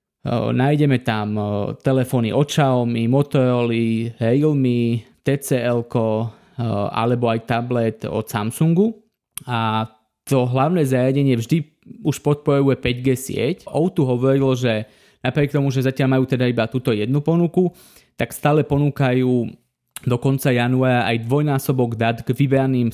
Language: Slovak